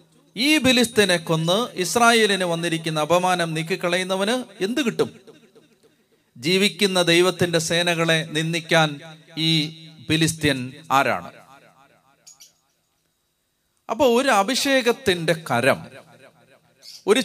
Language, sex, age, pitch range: Malayalam, male, 40-59, 150-195 Hz